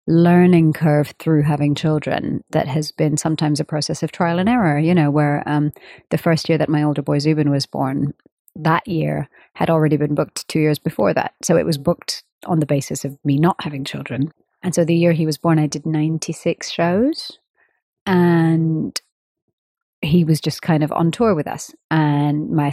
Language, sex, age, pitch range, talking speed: English, female, 30-49, 150-175 Hz, 195 wpm